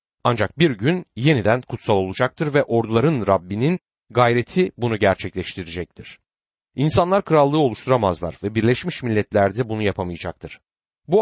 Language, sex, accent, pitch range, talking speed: Turkish, male, native, 100-145 Hz, 120 wpm